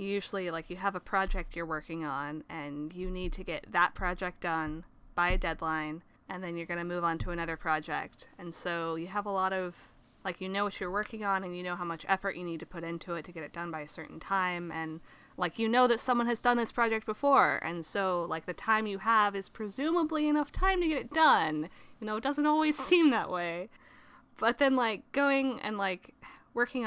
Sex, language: female, English